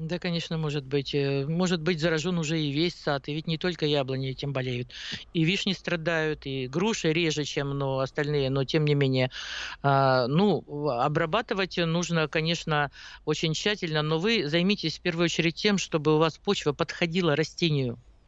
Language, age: Russian, 50-69